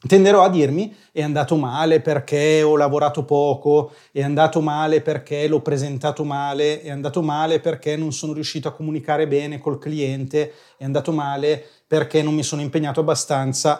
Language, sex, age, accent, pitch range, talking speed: Italian, male, 30-49, native, 145-165 Hz, 165 wpm